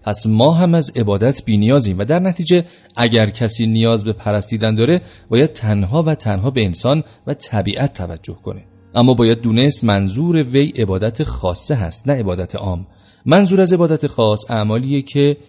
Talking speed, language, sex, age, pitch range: 165 wpm, Persian, male, 30-49, 105-140 Hz